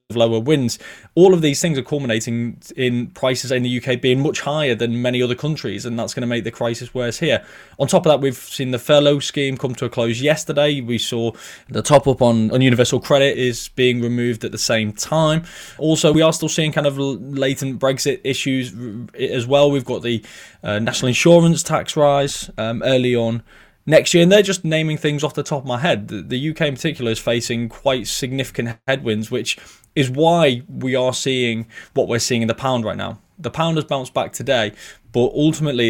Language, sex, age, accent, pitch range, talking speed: English, male, 20-39, British, 115-140 Hz, 210 wpm